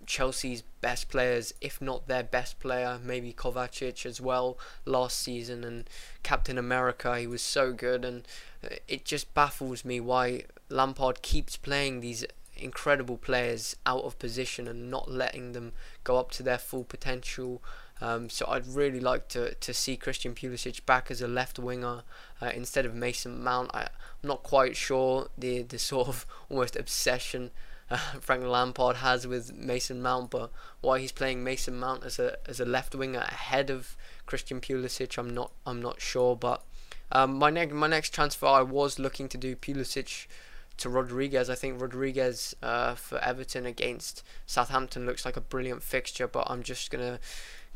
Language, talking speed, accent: English, 170 wpm, British